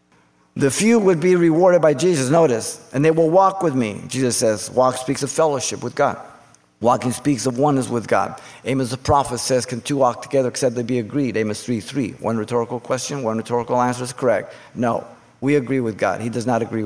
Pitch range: 115-150 Hz